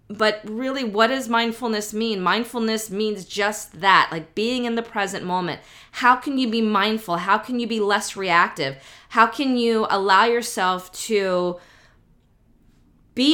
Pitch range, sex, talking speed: 185-235 Hz, female, 155 wpm